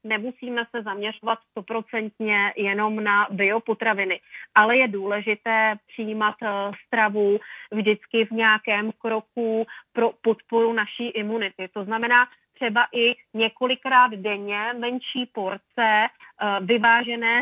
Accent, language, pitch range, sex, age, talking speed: Czech, English, 210-230 Hz, female, 30-49, 100 wpm